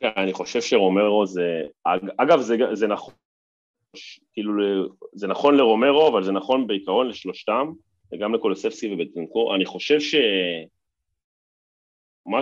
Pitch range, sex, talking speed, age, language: 85-125 Hz, male, 100 wpm, 30-49, Hebrew